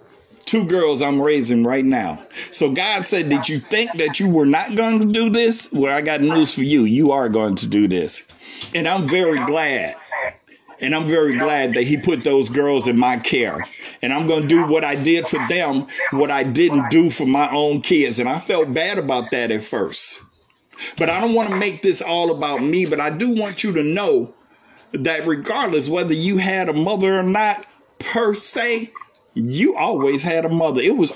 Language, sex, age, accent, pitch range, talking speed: English, male, 50-69, American, 150-220 Hz, 210 wpm